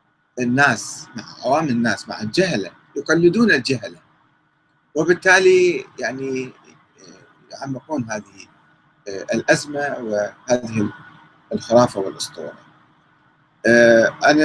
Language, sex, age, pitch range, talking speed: Arabic, male, 40-59, 120-175 Hz, 70 wpm